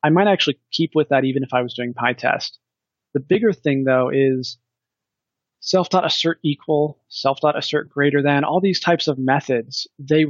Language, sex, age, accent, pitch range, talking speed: English, male, 30-49, American, 135-170 Hz, 165 wpm